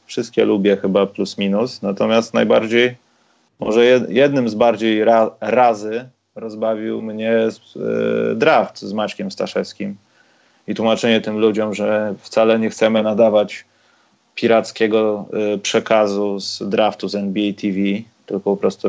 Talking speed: 120 wpm